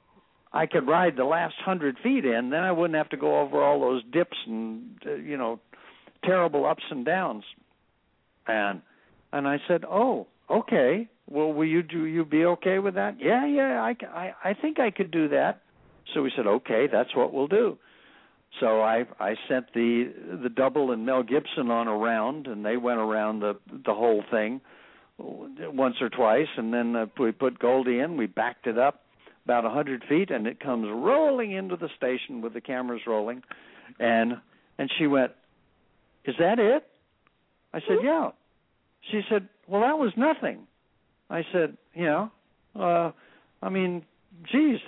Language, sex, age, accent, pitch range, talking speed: English, male, 60-79, American, 125-185 Hz, 175 wpm